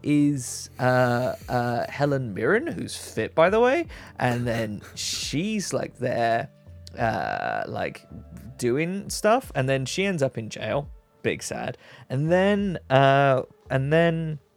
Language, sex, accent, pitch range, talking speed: English, male, British, 115-150 Hz, 130 wpm